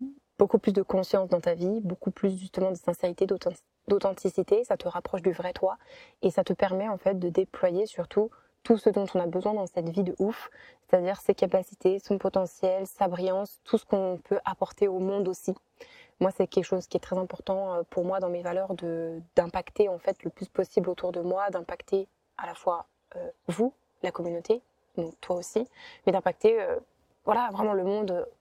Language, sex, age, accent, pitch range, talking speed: French, female, 20-39, French, 180-205 Hz, 200 wpm